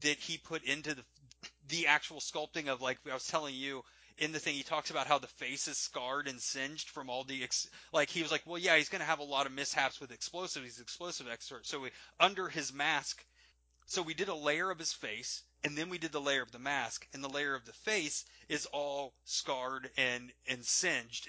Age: 30-49